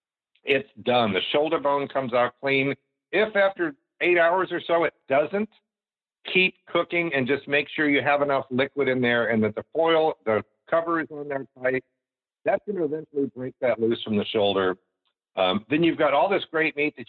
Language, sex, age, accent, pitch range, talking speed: English, male, 50-69, American, 120-165 Hz, 195 wpm